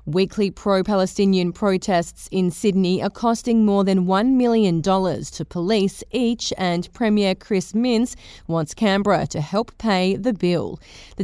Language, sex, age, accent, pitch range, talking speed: English, female, 30-49, Australian, 175-215 Hz, 145 wpm